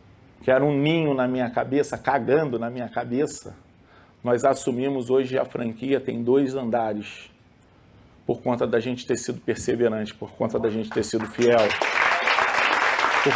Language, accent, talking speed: Portuguese, Brazilian, 155 wpm